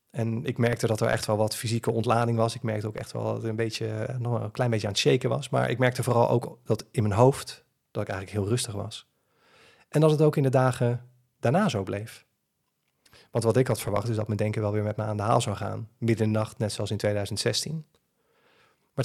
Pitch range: 110-125 Hz